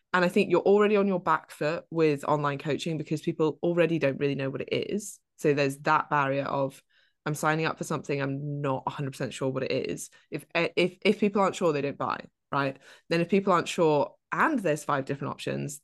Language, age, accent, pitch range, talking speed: English, 20-39, British, 140-180 Hz, 220 wpm